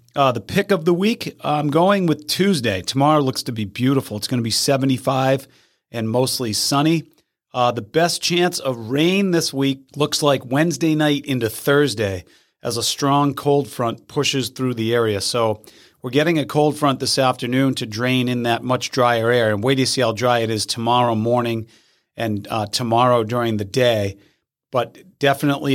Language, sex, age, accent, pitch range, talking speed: English, male, 40-59, American, 120-150 Hz, 185 wpm